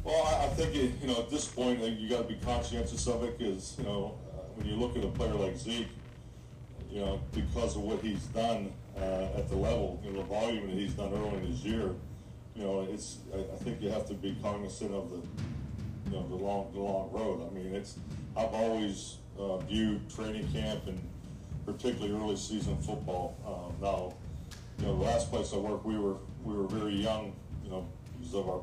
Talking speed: 220 wpm